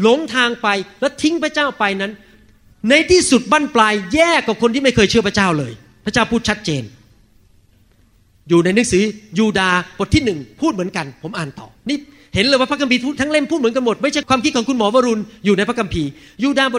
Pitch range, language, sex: 165-280 Hz, Thai, male